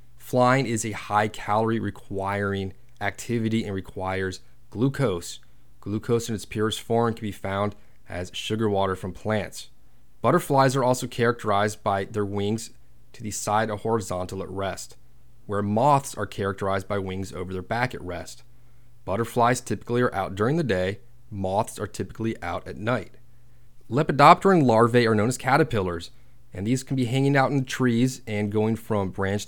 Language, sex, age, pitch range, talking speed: English, male, 30-49, 100-125 Hz, 160 wpm